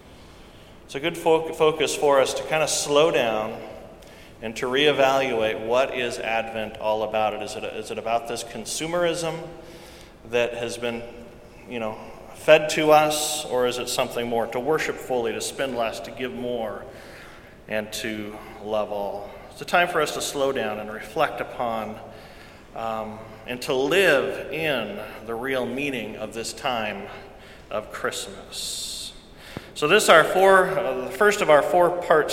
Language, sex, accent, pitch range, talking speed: English, male, American, 115-170 Hz, 165 wpm